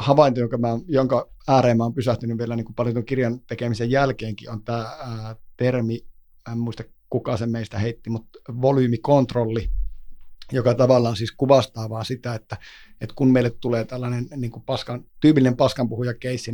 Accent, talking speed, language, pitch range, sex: native, 160 wpm, Finnish, 115-130 Hz, male